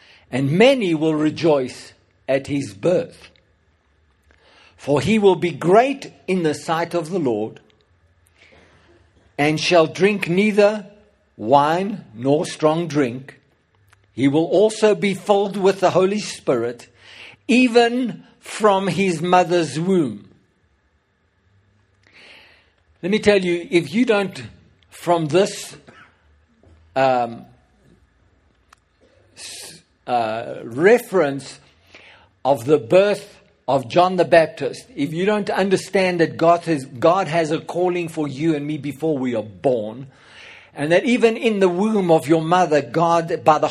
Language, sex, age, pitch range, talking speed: English, male, 60-79, 130-180 Hz, 120 wpm